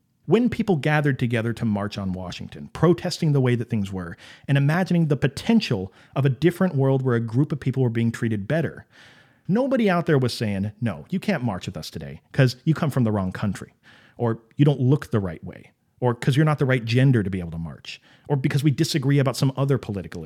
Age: 40-59